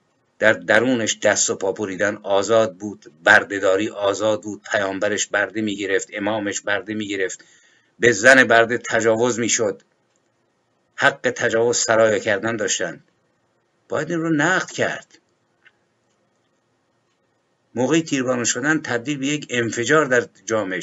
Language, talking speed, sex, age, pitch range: Persian, 125 wpm, male, 50-69, 115-145 Hz